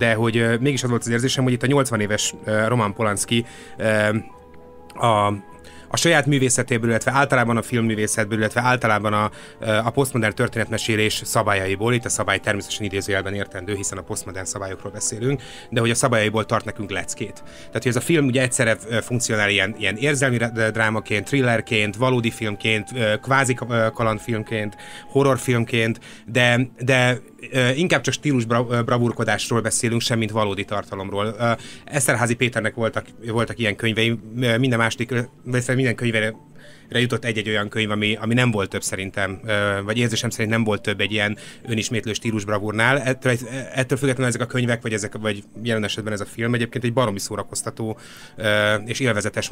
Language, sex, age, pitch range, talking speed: Hungarian, male, 30-49, 105-125 Hz, 150 wpm